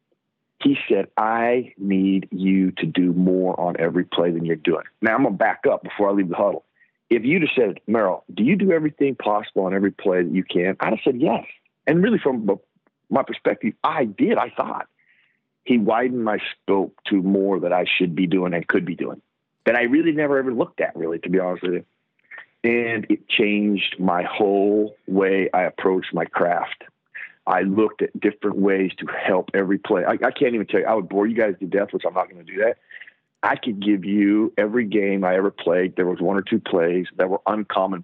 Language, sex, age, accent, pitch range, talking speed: English, male, 50-69, American, 90-105 Hz, 220 wpm